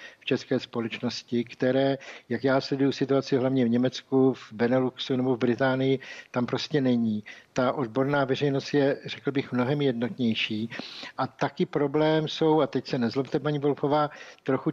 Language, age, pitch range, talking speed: Czech, 60-79, 125-145 Hz, 155 wpm